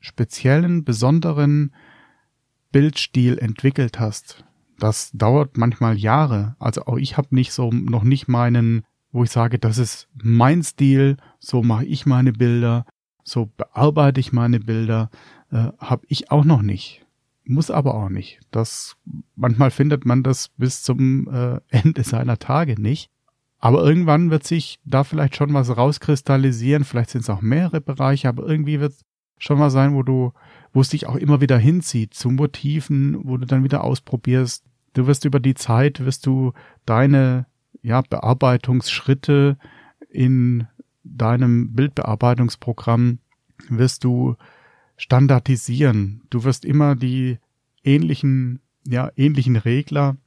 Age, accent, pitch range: 40-59, German, 120-140 Hz